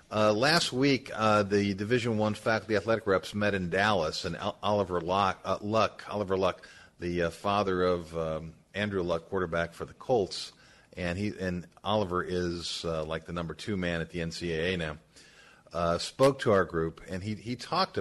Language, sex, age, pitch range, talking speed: English, male, 40-59, 90-110 Hz, 185 wpm